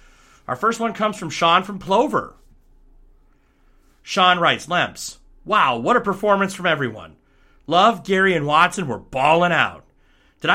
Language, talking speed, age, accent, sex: English, 140 wpm, 30-49, American, male